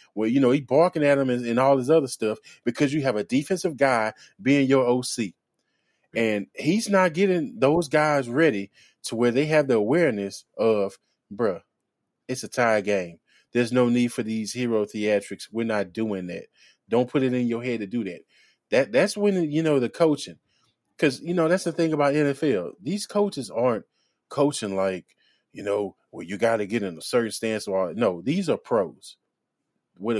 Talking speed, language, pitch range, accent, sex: 195 wpm, English, 105-160 Hz, American, male